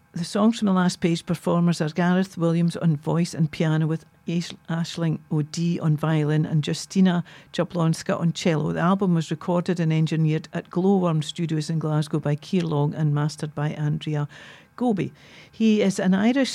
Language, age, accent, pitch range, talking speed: English, 60-79, British, 160-195 Hz, 170 wpm